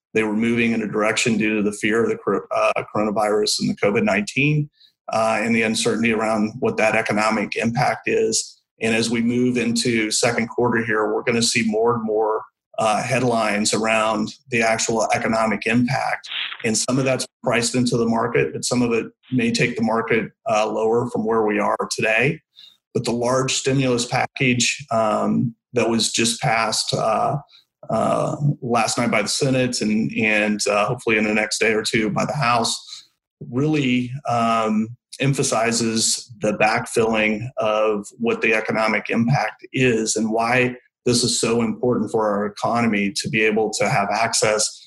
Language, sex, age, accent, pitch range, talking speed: English, male, 30-49, American, 110-125 Hz, 170 wpm